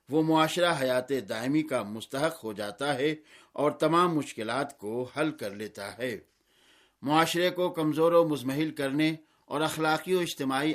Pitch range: 130-160 Hz